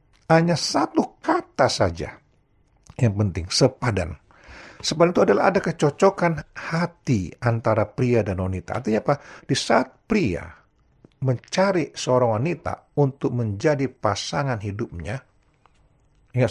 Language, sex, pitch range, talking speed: Indonesian, male, 110-160 Hz, 110 wpm